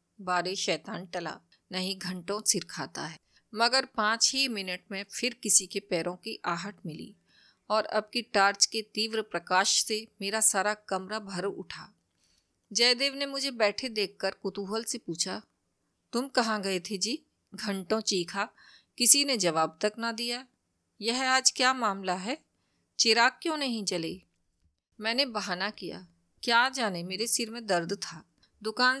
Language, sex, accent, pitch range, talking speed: Hindi, female, native, 195-245 Hz, 155 wpm